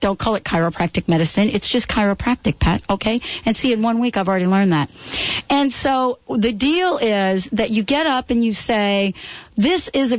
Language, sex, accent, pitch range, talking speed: English, female, American, 180-225 Hz, 200 wpm